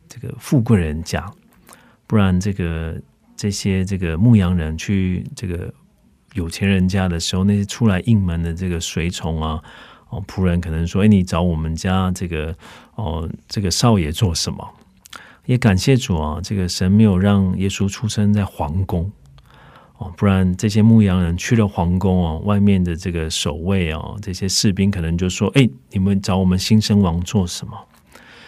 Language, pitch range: Korean, 90-110 Hz